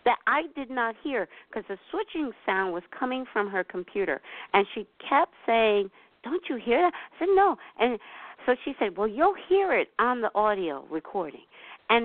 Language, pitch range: English, 205-280 Hz